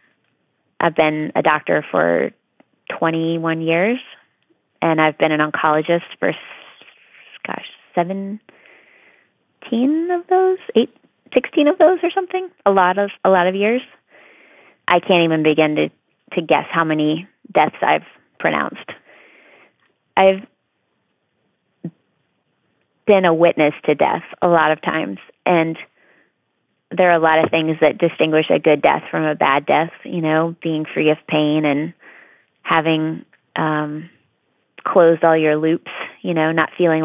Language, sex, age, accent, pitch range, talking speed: English, female, 30-49, American, 155-175 Hz, 140 wpm